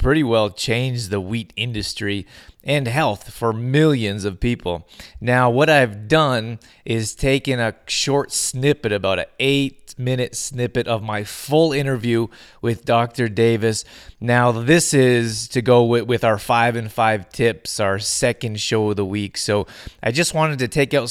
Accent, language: American, English